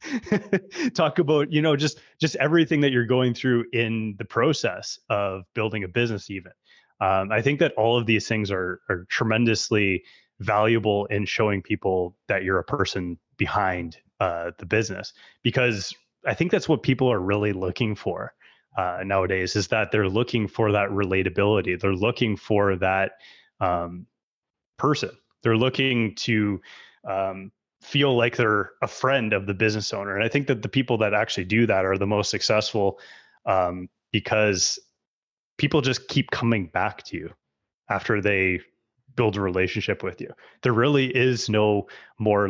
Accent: American